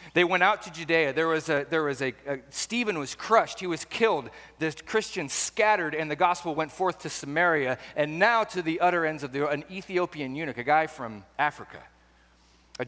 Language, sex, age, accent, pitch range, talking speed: English, male, 40-59, American, 125-180 Hz, 205 wpm